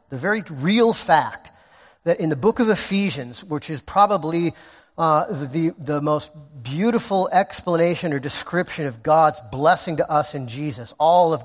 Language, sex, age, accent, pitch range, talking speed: English, male, 40-59, American, 145-185 Hz, 155 wpm